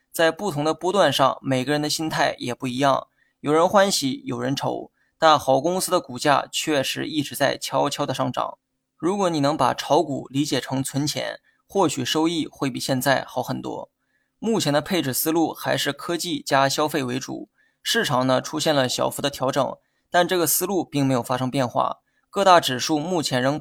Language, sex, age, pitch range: Chinese, male, 20-39, 130-160 Hz